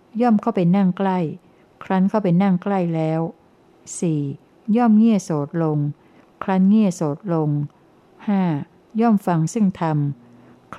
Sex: female